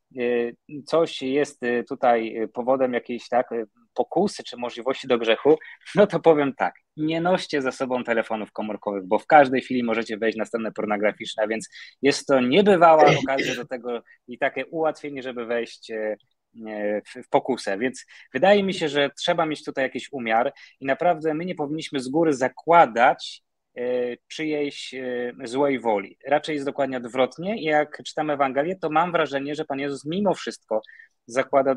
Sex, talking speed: male, 150 wpm